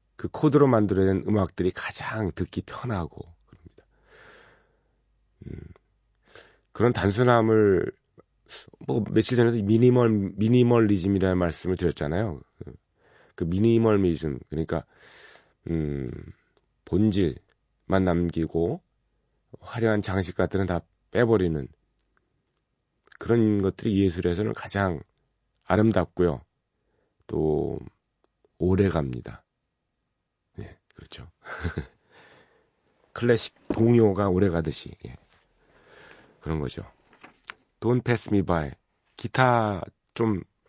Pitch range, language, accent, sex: 85-110 Hz, Korean, native, male